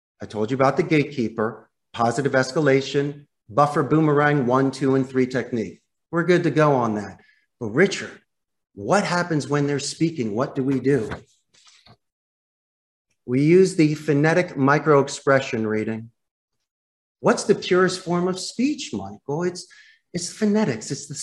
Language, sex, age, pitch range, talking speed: English, male, 40-59, 120-165 Hz, 145 wpm